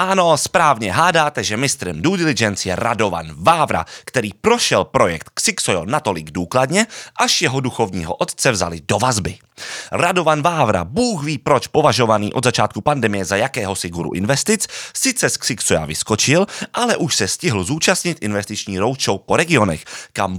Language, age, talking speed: Czech, 30-49, 150 wpm